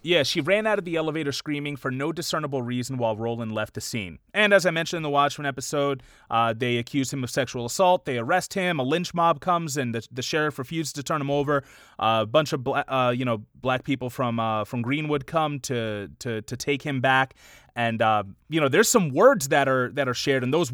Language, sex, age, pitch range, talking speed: English, male, 30-49, 120-150 Hz, 240 wpm